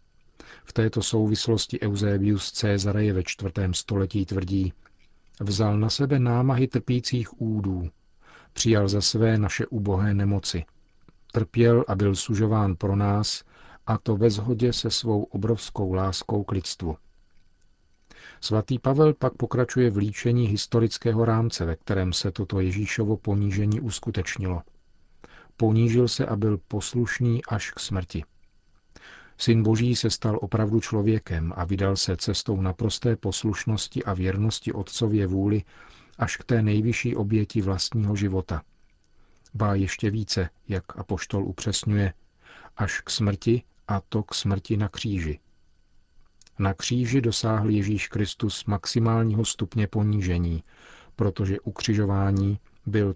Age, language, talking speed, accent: 50-69, Czech, 125 wpm, native